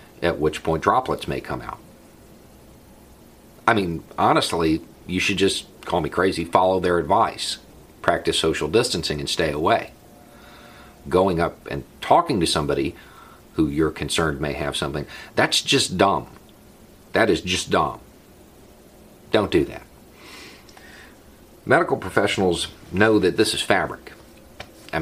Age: 40-59